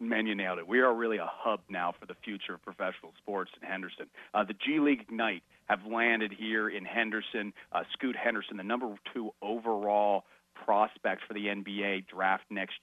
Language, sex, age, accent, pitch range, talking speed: English, male, 40-59, American, 105-115 Hz, 190 wpm